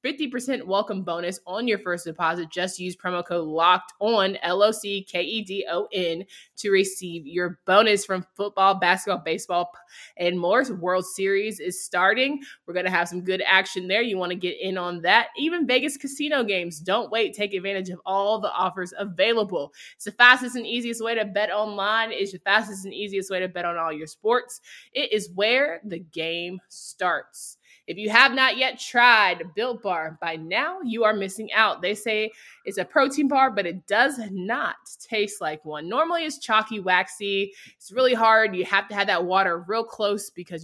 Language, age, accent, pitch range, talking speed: English, 20-39, American, 180-225 Hz, 185 wpm